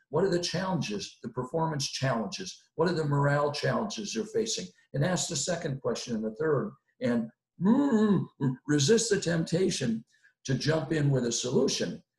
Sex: male